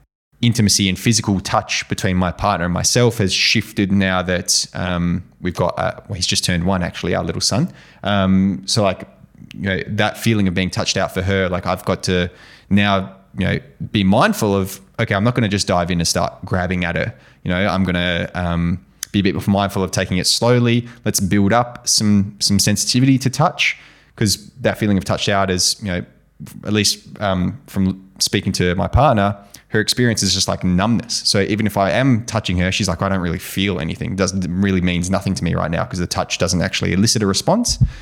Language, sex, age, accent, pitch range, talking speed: English, male, 20-39, Australian, 90-110 Hz, 220 wpm